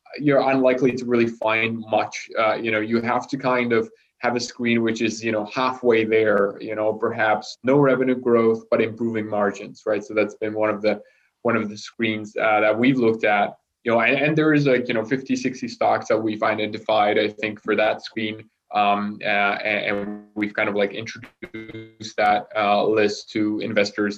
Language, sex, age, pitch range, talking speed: English, male, 20-39, 105-120 Hz, 200 wpm